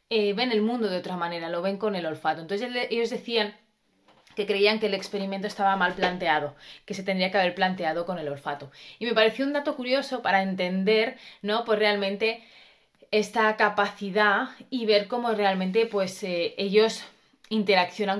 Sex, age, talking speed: female, 20-39, 175 wpm